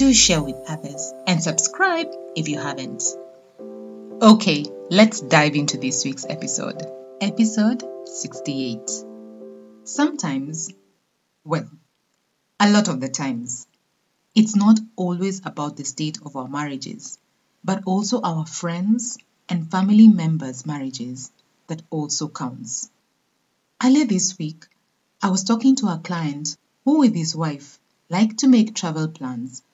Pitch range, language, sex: 140-215 Hz, English, female